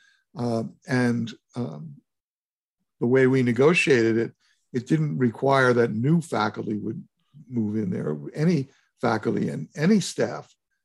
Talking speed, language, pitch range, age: 125 wpm, English, 115-150 Hz, 60-79